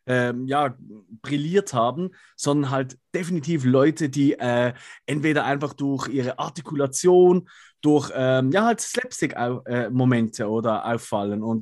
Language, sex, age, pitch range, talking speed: German, male, 30-49, 125-155 Hz, 125 wpm